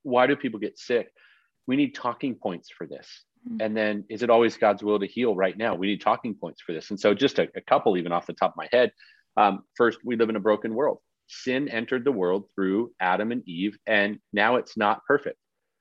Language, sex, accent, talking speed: English, male, American, 235 wpm